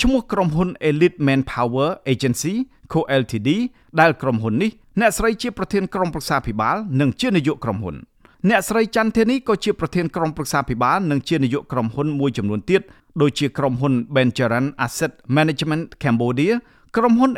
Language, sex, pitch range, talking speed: English, male, 130-215 Hz, 40 wpm